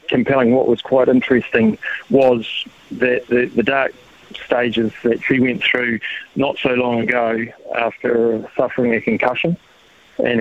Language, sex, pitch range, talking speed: English, male, 115-125 Hz, 140 wpm